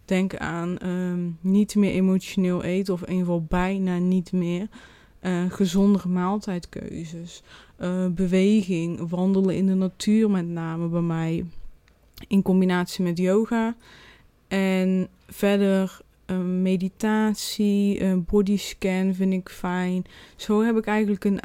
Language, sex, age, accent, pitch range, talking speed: Dutch, female, 20-39, Dutch, 180-205 Hz, 125 wpm